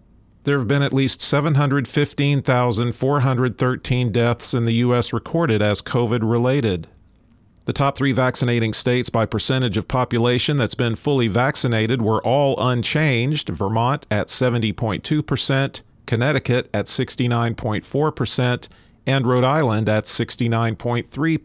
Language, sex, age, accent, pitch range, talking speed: English, male, 40-59, American, 115-135 Hz, 120 wpm